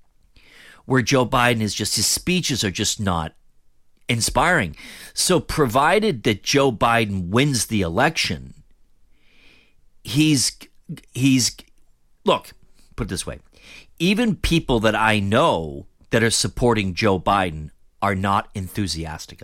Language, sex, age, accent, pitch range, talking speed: English, male, 50-69, American, 85-120 Hz, 120 wpm